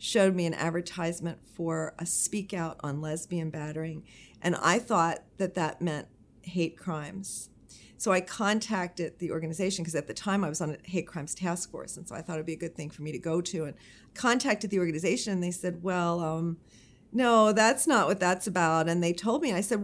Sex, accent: female, American